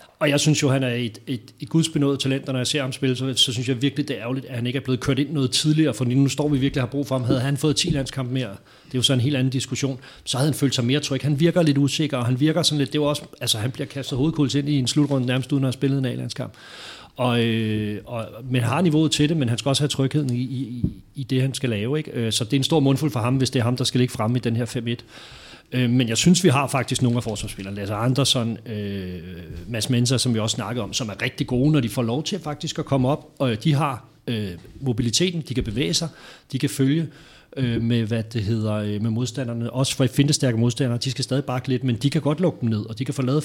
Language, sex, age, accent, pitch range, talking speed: Danish, male, 30-49, native, 120-140 Hz, 285 wpm